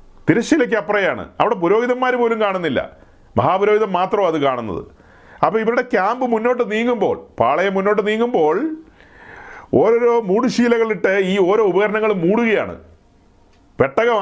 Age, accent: 40-59, native